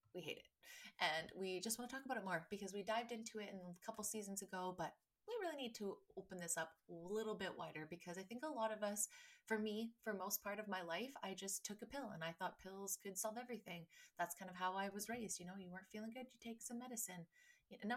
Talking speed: 260 wpm